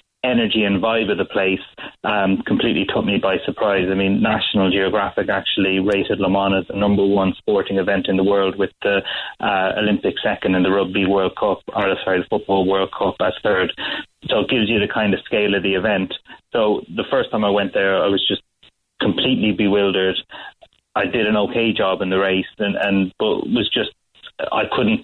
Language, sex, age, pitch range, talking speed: English, male, 30-49, 95-105 Hz, 205 wpm